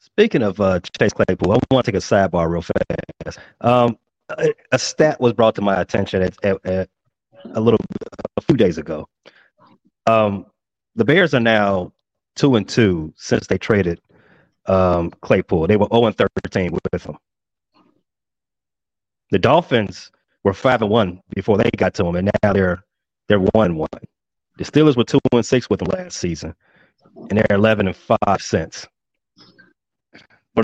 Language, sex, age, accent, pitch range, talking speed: English, male, 30-49, American, 100-135 Hz, 165 wpm